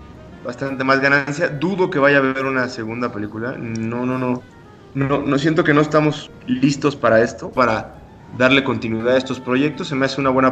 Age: 30-49